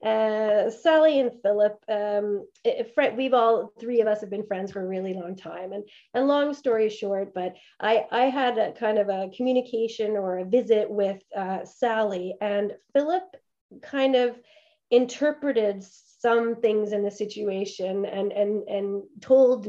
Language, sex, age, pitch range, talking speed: English, female, 30-49, 205-250 Hz, 160 wpm